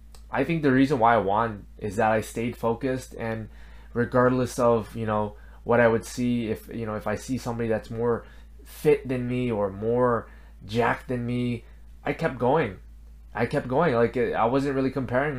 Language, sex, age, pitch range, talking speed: English, male, 20-39, 105-130 Hz, 190 wpm